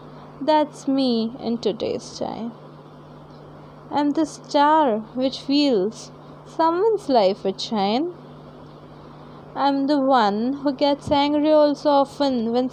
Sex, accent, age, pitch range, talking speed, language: female, Indian, 20-39, 225-295 Hz, 110 wpm, English